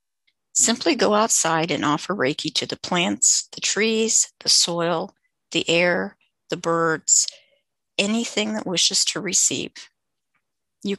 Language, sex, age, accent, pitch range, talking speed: English, female, 50-69, American, 170-215 Hz, 125 wpm